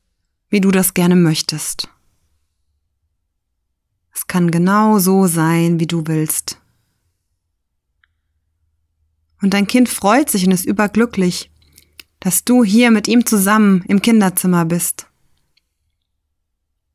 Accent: German